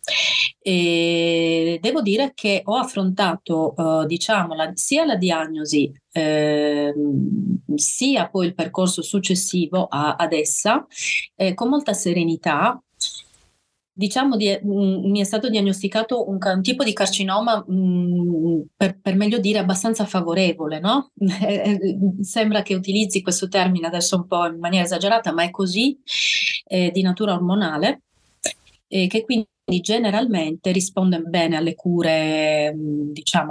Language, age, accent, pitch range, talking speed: Italian, 30-49, native, 165-205 Hz, 130 wpm